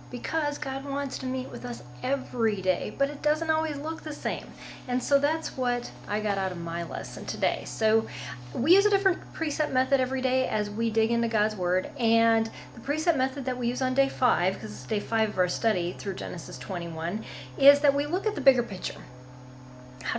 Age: 30-49